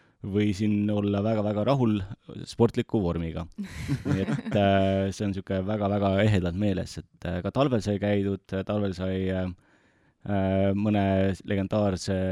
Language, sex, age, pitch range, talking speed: English, male, 20-39, 95-110 Hz, 105 wpm